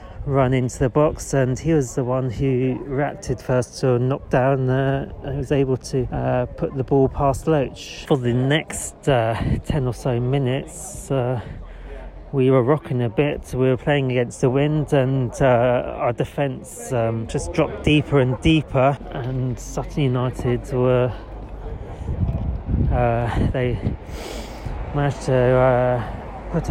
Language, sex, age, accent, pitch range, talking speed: English, male, 30-49, British, 120-140 Hz, 145 wpm